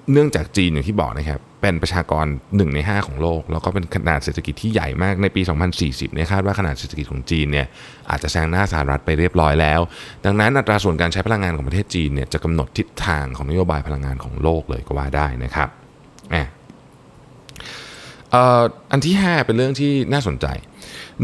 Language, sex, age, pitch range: Thai, male, 20-39, 75-100 Hz